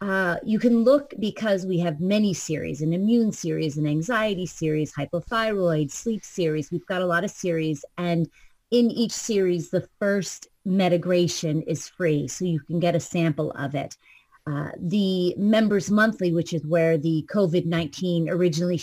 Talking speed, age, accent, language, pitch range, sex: 165 wpm, 30-49, American, English, 155-195 Hz, female